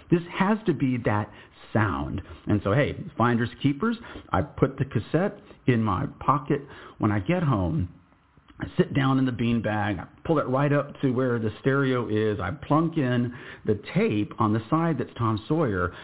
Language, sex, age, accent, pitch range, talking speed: English, male, 50-69, American, 100-130 Hz, 185 wpm